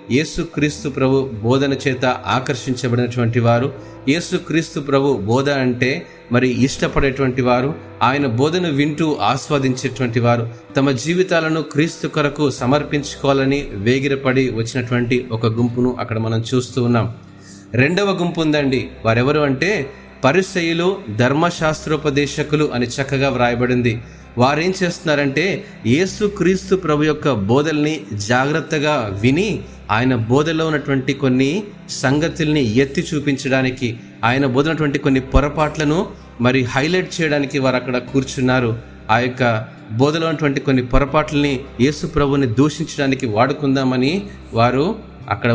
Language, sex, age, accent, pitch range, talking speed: Telugu, male, 30-49, native, 125-150 Hz, 105 wpm